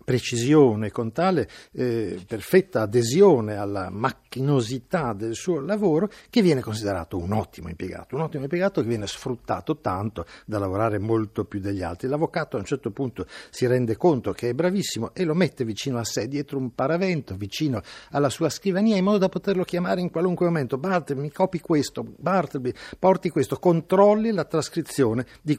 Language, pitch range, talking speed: Italian, 110-165 Hz, 170 wpm